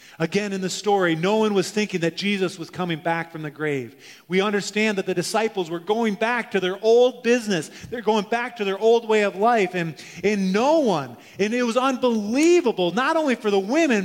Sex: male